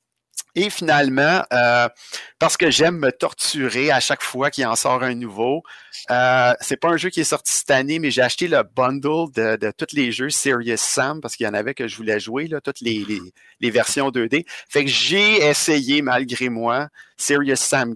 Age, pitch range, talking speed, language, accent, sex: 50-69, 120-160 Hz, 200 wpm, French, Canadian, male